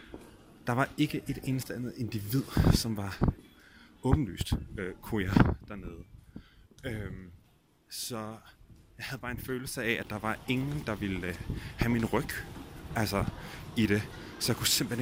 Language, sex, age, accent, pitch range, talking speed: Danish, male, 30-49, native, 110-140 Hz, 140 wpm